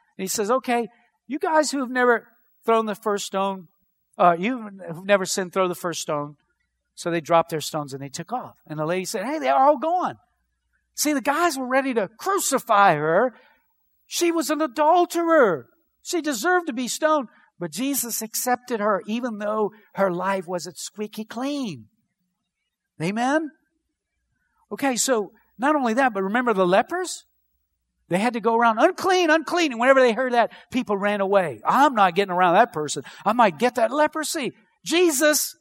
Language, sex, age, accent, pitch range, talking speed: English, male, 50-69, American, 190-280 Hz, 170 wpm